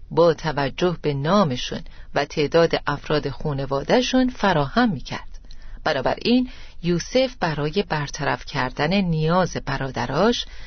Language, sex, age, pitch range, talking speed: Persian, female, 40-59, 145-200 Hz, 95 wpm